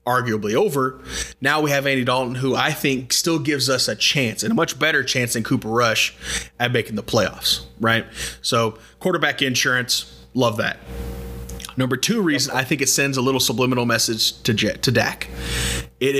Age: 30-49